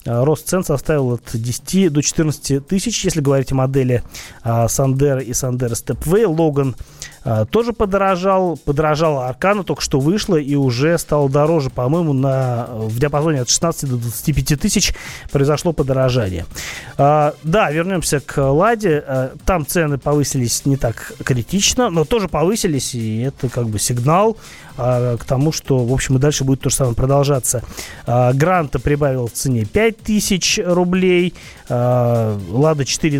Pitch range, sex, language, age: 130-170 Hz, male, Russian, 30-49